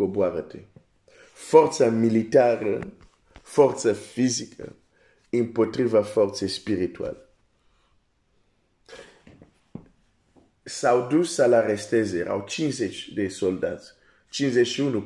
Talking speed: 75 wpm